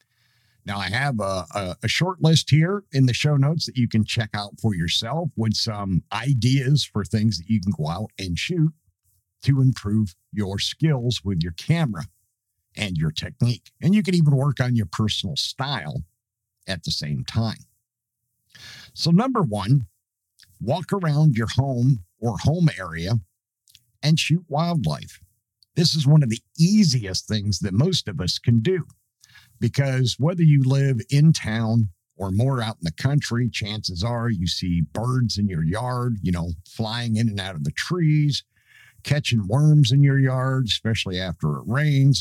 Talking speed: 170 wpm